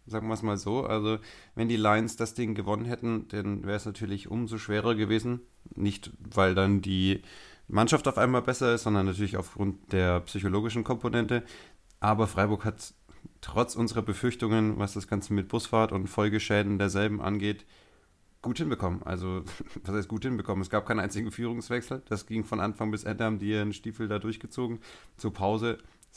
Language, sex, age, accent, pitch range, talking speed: German, male, 30-49, German, 95-110 Hz, 175 wpm